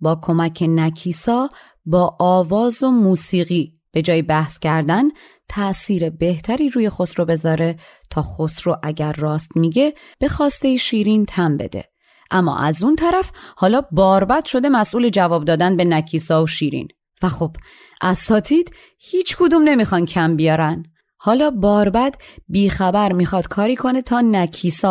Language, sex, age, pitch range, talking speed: Persian, female, 30-49, 160-205 Hz, 135 wpm